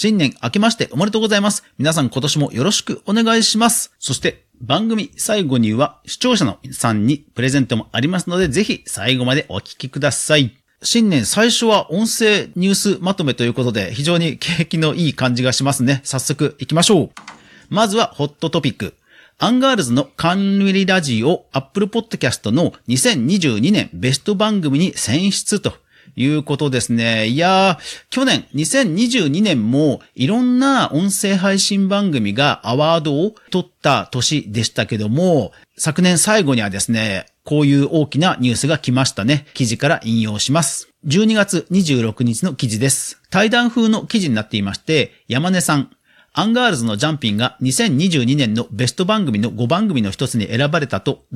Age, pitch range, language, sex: 40-59, 125-195 Hz, Japanese, male